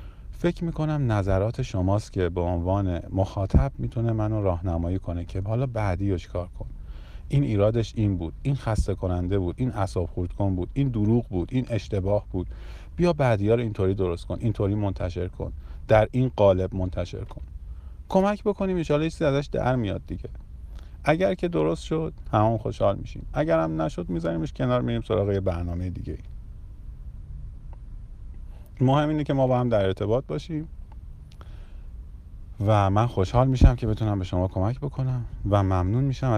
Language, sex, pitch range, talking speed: Persian, male, 90-120 Hz, 155 wpm